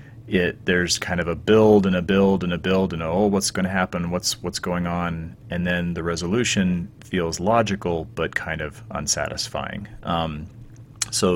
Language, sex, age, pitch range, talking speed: English, male, 30-49, 85-115 Hz, 175 wpm